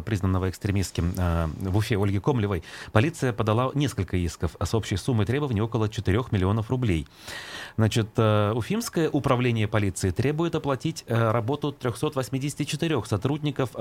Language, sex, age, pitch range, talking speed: Russian, male, 30-49, 100-130 Hz, 130 wpm